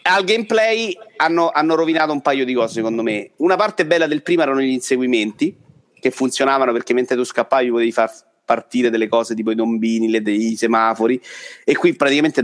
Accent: native